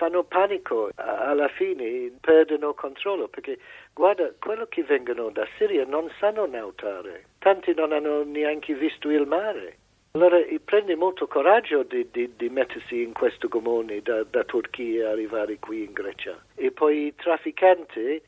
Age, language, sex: 60-79, Italian, male